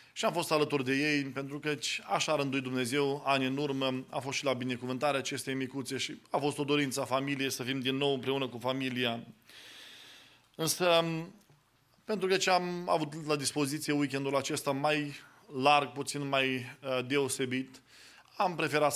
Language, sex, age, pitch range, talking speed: English, male, 20-39, 130-145 Hz, 160 wpm